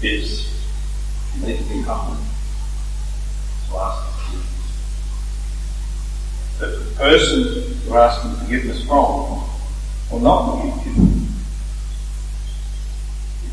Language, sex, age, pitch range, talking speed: English, female, 50-69, 75-105 Hz, 95 wpm